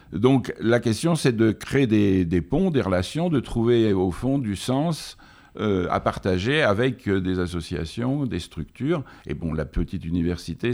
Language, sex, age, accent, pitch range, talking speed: French, male, 60-79, French, 85-110 Hz, 170 wpm